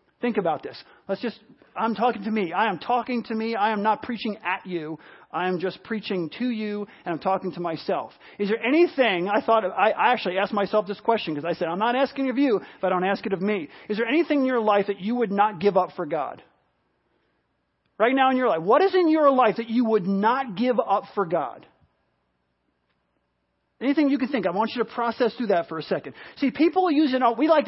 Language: English